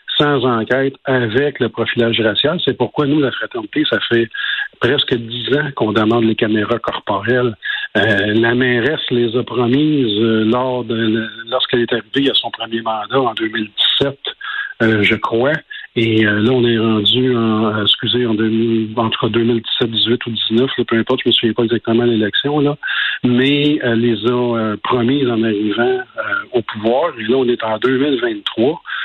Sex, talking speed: male, 175 wpm